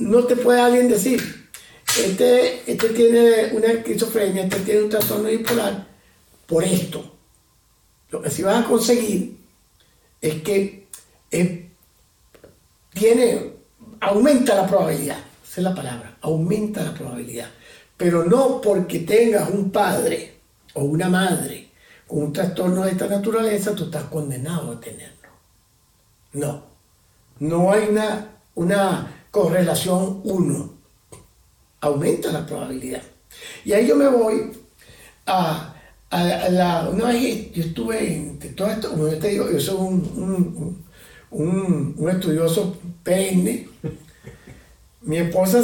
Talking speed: 130 wpm